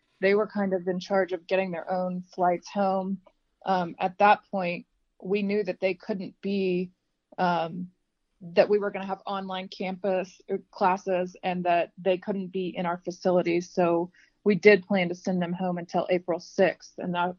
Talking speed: 185 wpm